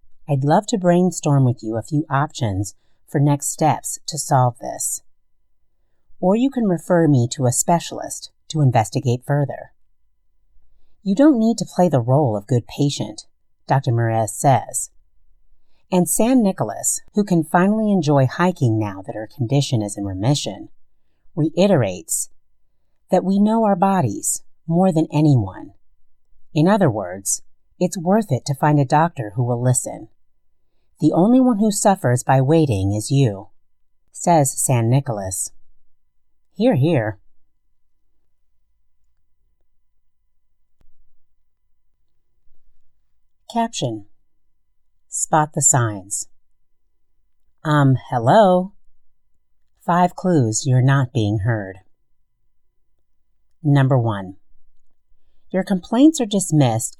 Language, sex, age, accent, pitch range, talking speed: English, female, 40-59, American, 100-165 Hz, 115 wpm